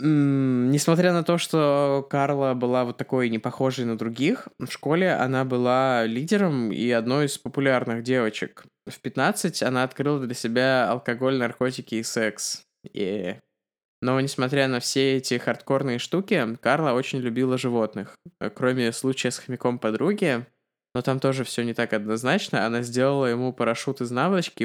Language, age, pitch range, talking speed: Russian, 20-39, 115-135 Hz, 150 wpm